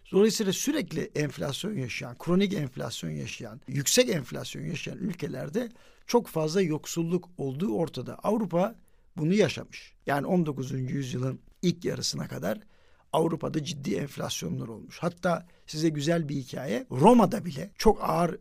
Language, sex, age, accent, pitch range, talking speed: Turkish, male, 60-79, native, 145-190 Hz, 125 wpm